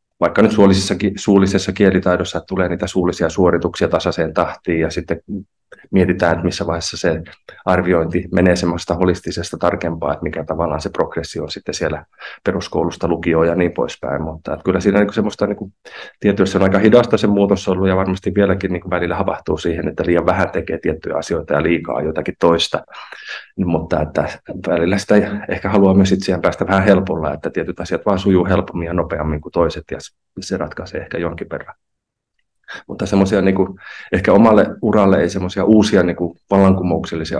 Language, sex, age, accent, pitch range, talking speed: Finnish, male, 30-49, native, 80-95 Hz, 170 wpm